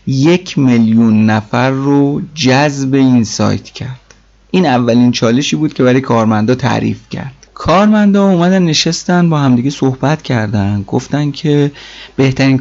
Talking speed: 130 wpm